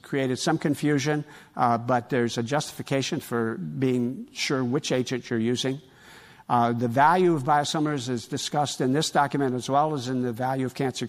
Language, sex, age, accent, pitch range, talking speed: English, male, 60-79, American, 120-145 Hz, 180 wpm